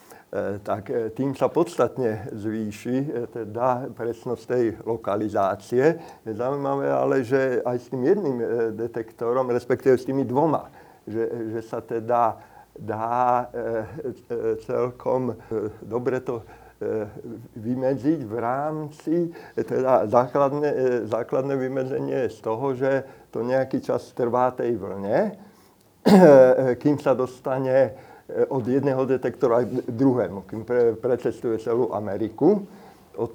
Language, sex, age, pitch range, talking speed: Slovak, male, 50-69, 115-135 Hz, 110 wpm